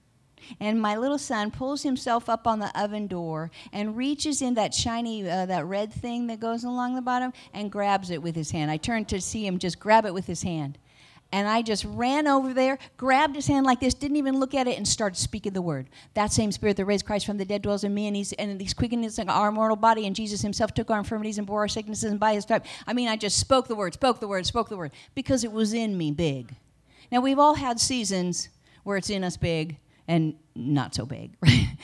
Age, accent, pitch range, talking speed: 50-69, American, 180-240 Hz, 250 wpm